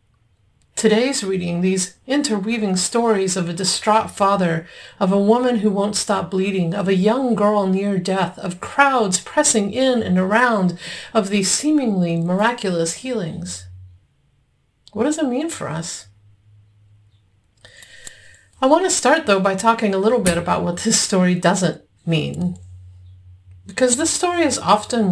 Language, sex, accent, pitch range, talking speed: English, female, American, 160-215 Hz, 145 wpm